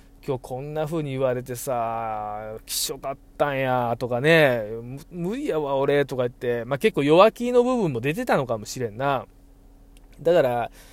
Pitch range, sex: 125-195 Hz, male